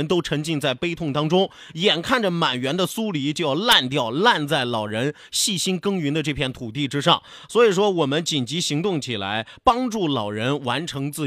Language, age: Chinese, 30-49